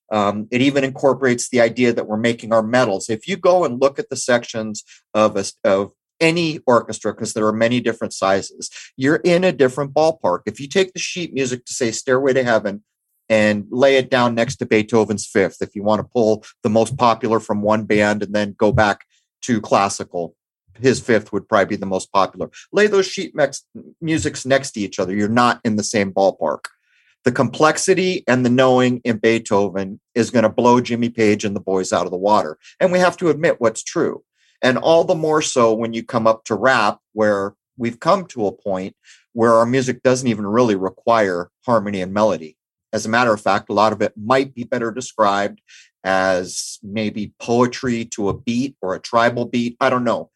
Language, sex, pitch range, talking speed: English, male, 105-130 Hz, 205 wpm